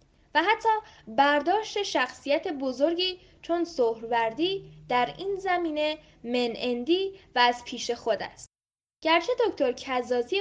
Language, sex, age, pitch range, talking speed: Persian, female, 10-29, 245-350 Hz, 115 wpm